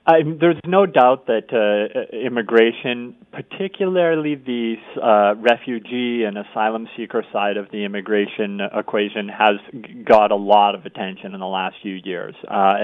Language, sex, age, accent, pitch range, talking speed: English, male, 40-59, American, 95-115 Hz, 140 wpm